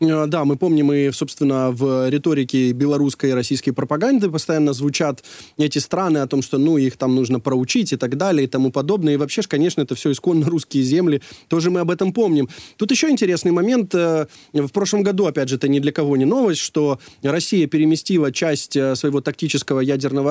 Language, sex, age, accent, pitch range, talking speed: Ukrainian, male, 20-39, native, 140-180 Hz, 190 wpm